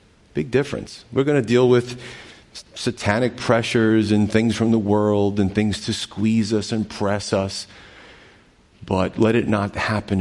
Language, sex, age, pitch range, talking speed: English, male, 40-59, 95-115 Hz, 160 wpm